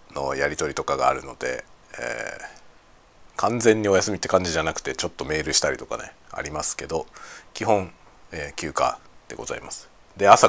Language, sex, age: Japanese, male, 40-59